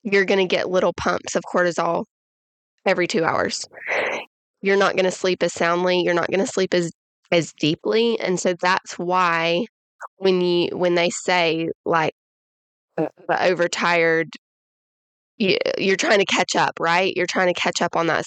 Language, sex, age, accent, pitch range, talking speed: English, female, 20-39, American, 170-195 Hz, 170 wpm